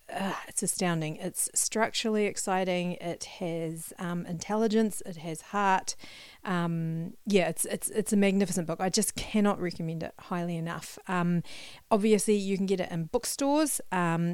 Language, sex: English, female